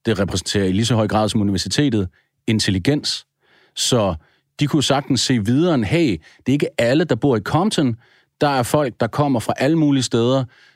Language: Danish